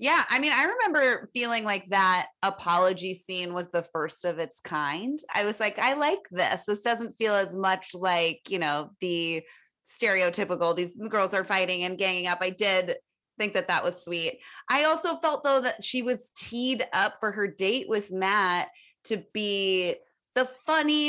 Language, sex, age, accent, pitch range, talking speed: English, female, 20-39, American, 185-260 Hz, 180 wpm